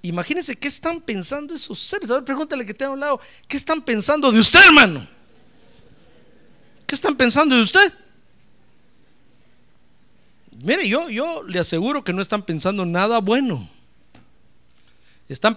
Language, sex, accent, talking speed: Spanish, male, Mexican, 140 wpm